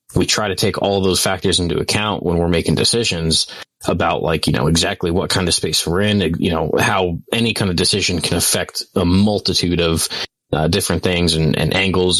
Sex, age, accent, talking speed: male, 20-39, American, 210 wpm